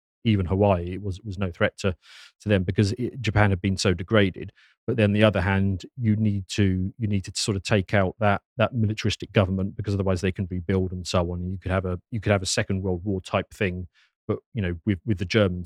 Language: English